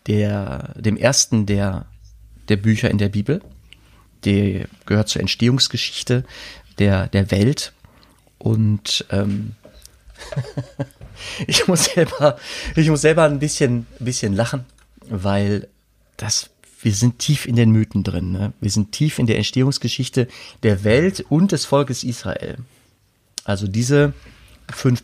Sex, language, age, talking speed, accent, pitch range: male, German, 30-49, 125 wpm, German, 100-130 Hz